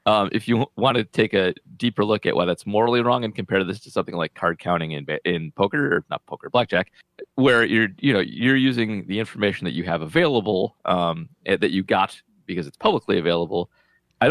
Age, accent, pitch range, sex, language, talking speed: 30-49, American, 90-120 Hz, male, English, 210 wpm